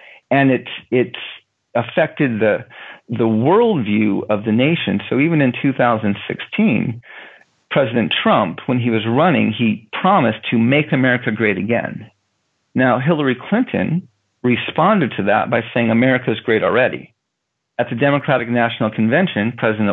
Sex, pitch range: male, 110-135 Hz